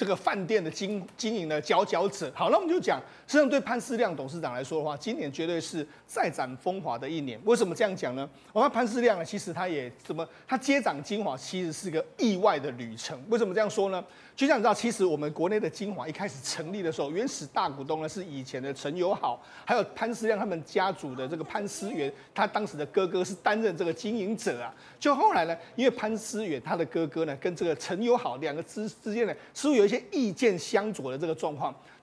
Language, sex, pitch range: Chinese, male, 165-225 Hz